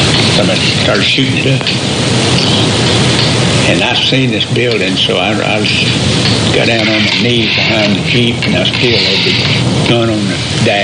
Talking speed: 160 wpm